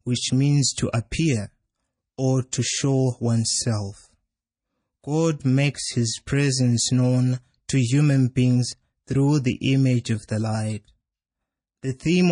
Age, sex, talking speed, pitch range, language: 20-39, male, 115 wpm, 115-135 Hz, English